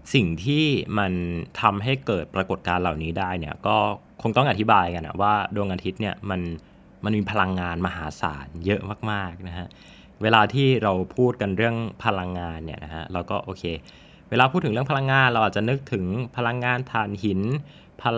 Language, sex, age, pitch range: Thai, male, 20-39, 90-115 Hz